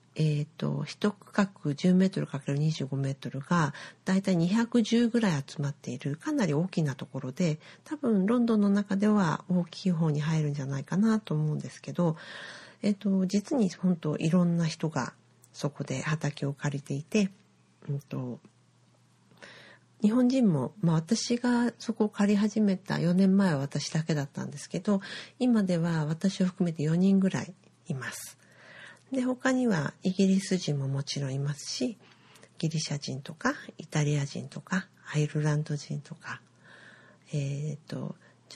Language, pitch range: Japanese, 145-190 Hz